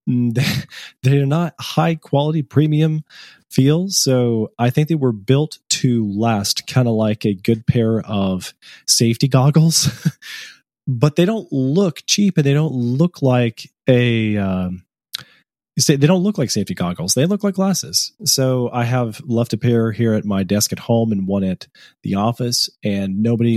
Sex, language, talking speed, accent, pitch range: male, English, 170 wpm, American, 110-145 Hz